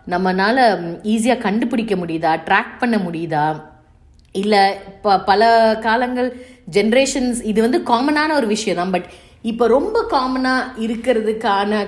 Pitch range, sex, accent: 175-230 Hz, female, native